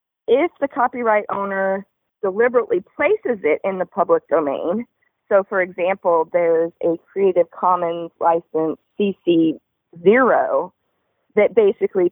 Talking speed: 110 wpm